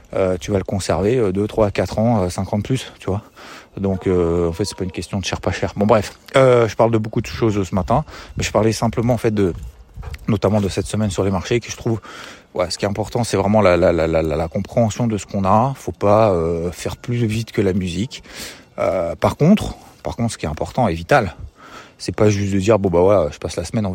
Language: French